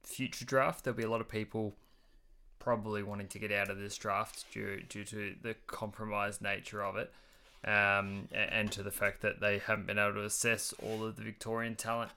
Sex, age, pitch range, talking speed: male, 20-39, 100-110 Hz, 200 wpm